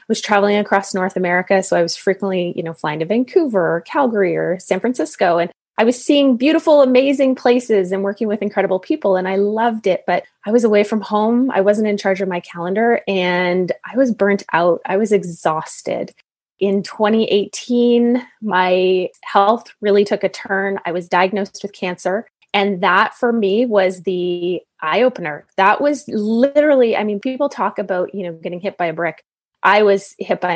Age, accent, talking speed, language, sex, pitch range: 20-39, American, 185 wpm, English, female, 185-240 Hz